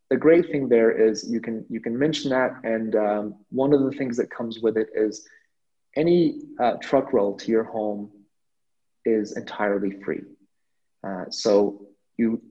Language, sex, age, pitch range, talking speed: English, male, 30-49, 100-120 Hz, 170 wpm